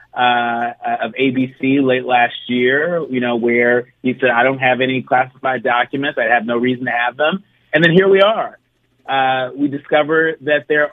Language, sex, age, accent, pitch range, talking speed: English, male, 30-49, American, 125-150 Hz, 185 wpm